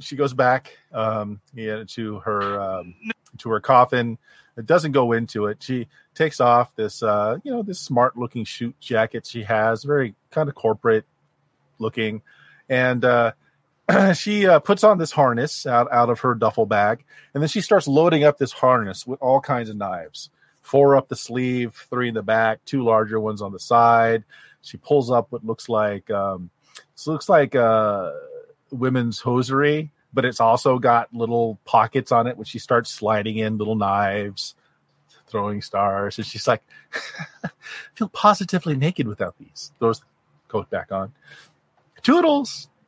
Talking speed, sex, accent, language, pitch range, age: 170 wpm, male, American, English, 110-140 Hz, 30-49